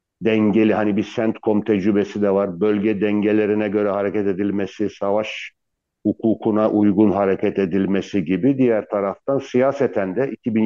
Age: 60-79